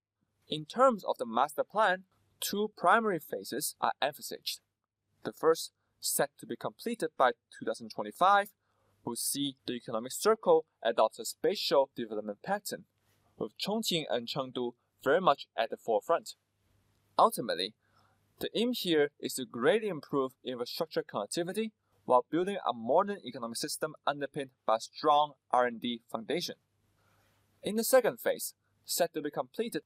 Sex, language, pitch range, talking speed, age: male, English, 115-195 Hz, 135 wpm, 20-39